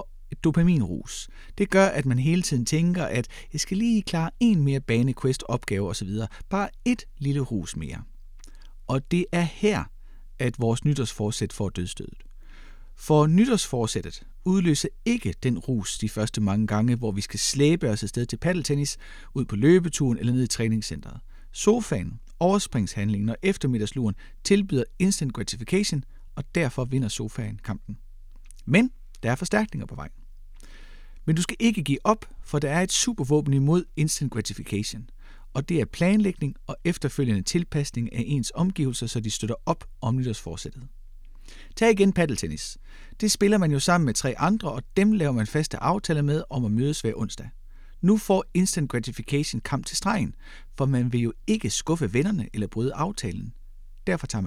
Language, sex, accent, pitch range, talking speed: Danish, male, native, 110-170 Hz, 165 wpm